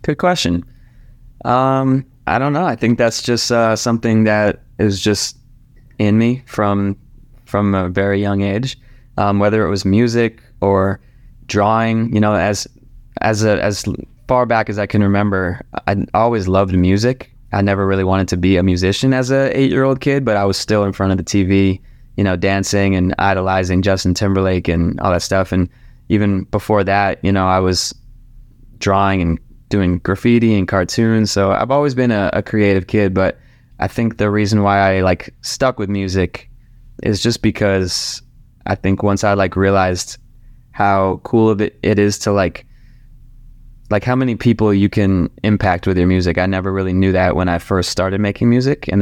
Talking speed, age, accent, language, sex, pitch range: 185 wpm, 20-39, American, English, male, 95-120 Hz